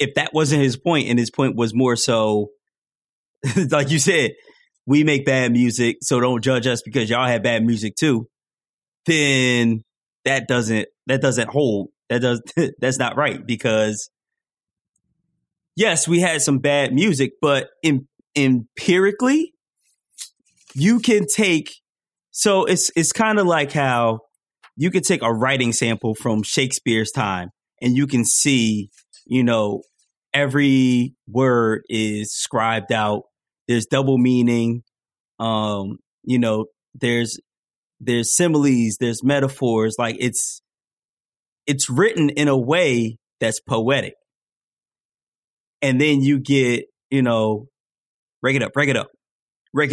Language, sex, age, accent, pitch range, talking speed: English, male, 20-39, American, 115-150 Hz, 135 wpm